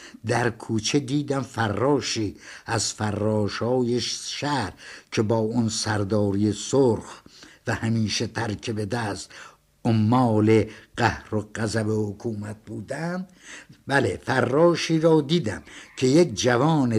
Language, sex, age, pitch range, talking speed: Persian, male, 60-79, 110-140 Hz, 105 wpm